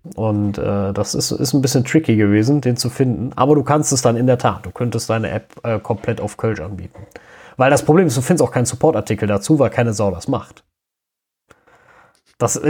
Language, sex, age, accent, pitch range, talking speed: German, male, 30-49, German, 100-125 Hz, 215 wpm